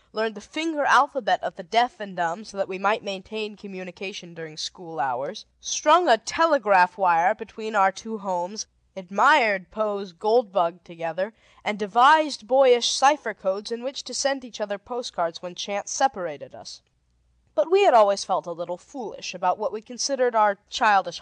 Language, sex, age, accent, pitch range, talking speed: English, female, 20-39, American, 190-275 Hz, 170 wpm